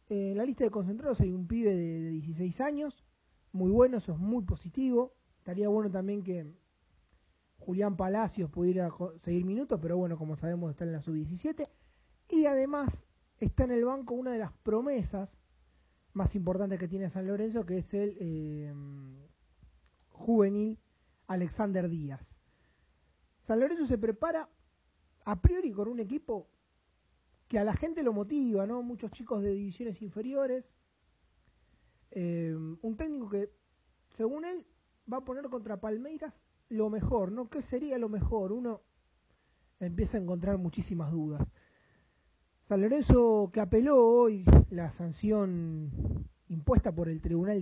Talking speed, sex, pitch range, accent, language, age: 145 wpm, male, 165-230 Hz, Argentinian, Spanish, 20-39